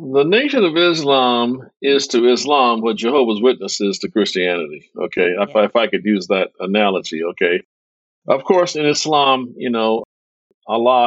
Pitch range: 105-130 Hz